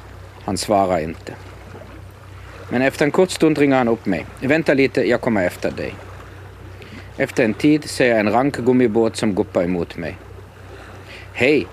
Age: 50-69